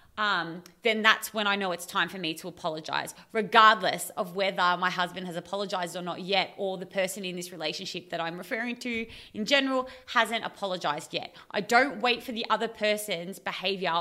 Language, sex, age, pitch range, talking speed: English, female, 20-39, 185-230 Hz, 195 wpm